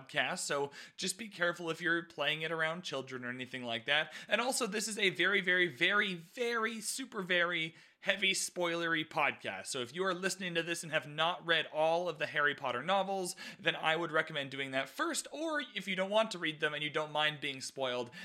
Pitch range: 145-195 Hz